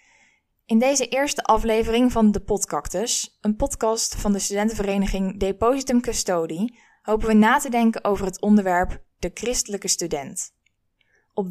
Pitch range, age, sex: 185-225 Hz, 10-29, female